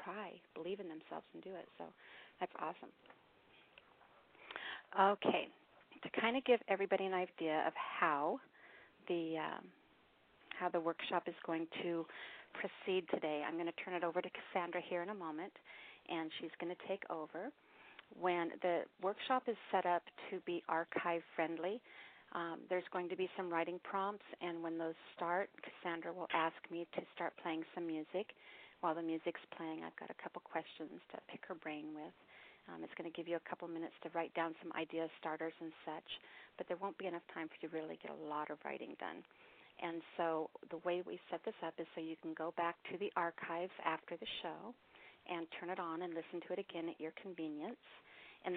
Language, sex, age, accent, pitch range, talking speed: English, female, 40-59, American, 165-185 Hz, 190 wpm